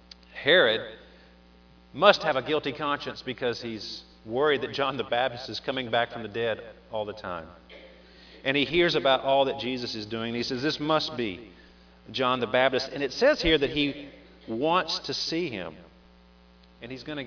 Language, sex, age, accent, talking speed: English, male, 40-59, American, 190 wpm